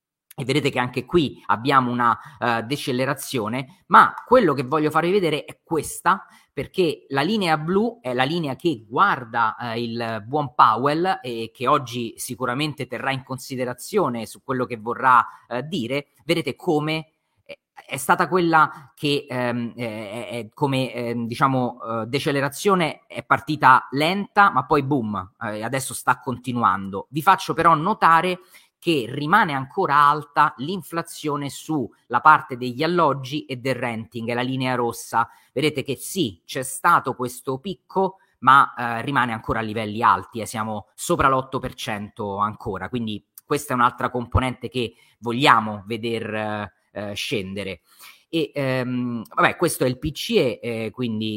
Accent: native